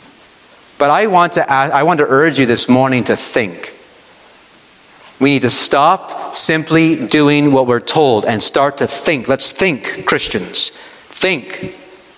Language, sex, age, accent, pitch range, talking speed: English, male, 40-59, American, 140-200 Hz, 155 wpm